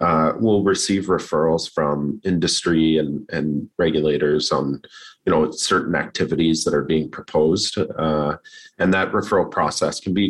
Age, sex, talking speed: 30-49, male, 145 wpm